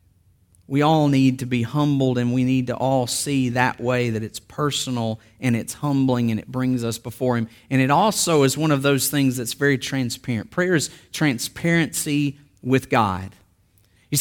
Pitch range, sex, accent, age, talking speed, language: 115-190 Hz, male, American, 40-59, 180 wpm, English